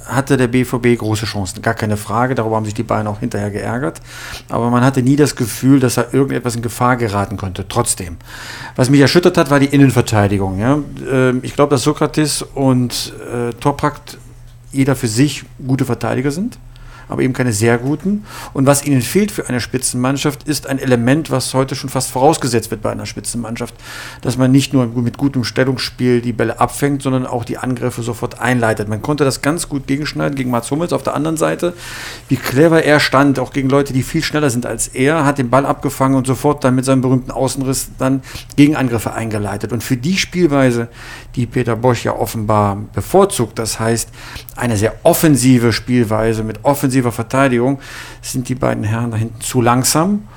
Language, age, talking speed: German, 40-59, 185 wpm